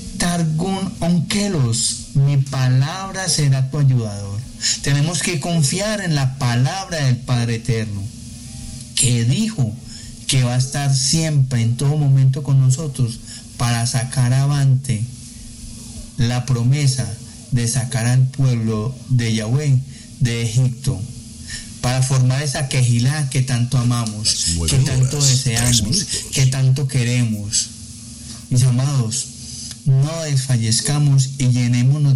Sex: male